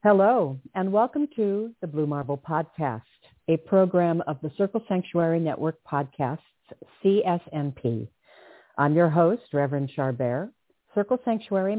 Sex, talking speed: female, 120 wpm